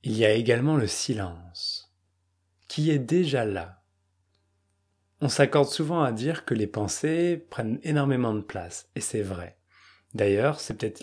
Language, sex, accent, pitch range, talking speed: French, male, French, 100-130 Hz, 150 wpm